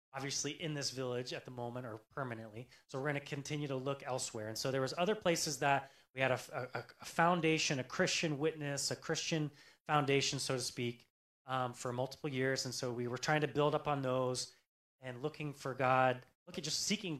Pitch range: 125-160 Hz